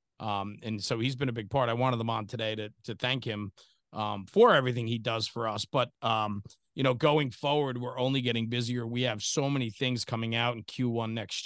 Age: 40-59